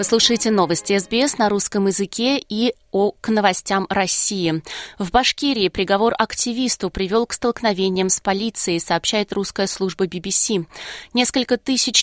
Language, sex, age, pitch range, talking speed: Russian, female, 20-39, 185-230 Hz, 125 wpm